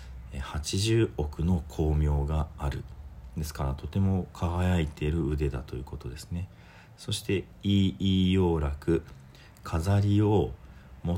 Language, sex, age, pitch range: Japanese, male, 40-59, 75-95 Hz